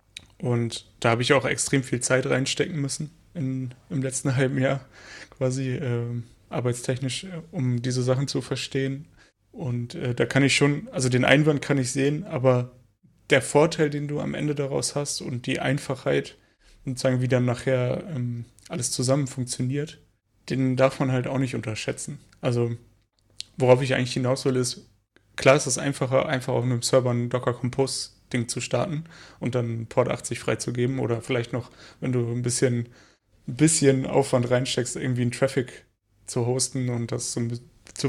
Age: 30-49